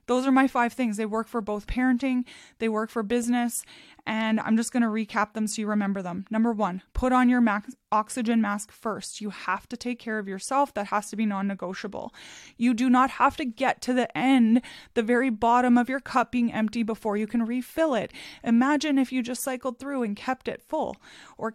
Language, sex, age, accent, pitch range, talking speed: English, female, 20-39, American, 215-255 Hz, 215 wpm